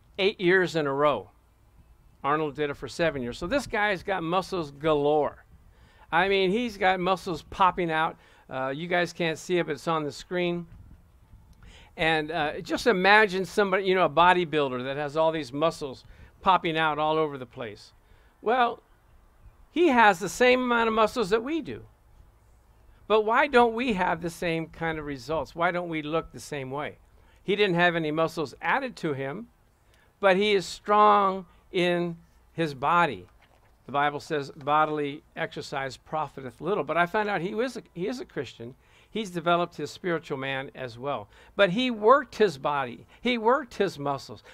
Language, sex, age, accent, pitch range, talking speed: English, male, 50-69, American, 145-200 Hz, 175 wpm